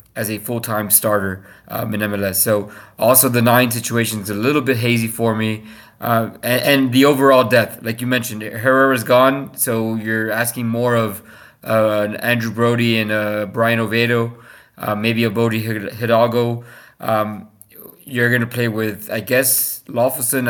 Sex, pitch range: male, 105-120 Hz